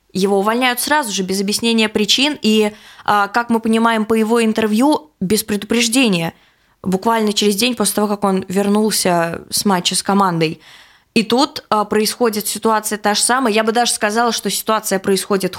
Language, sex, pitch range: Russian, female, 200-245 Hz